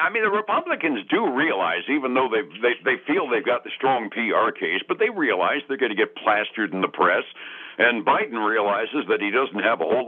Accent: American